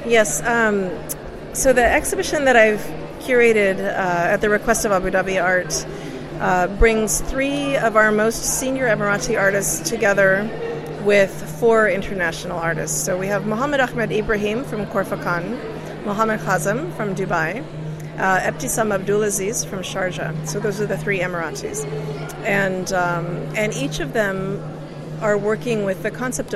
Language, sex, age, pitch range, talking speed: English, female, 40-59, 180-215 Hz, 145 wpm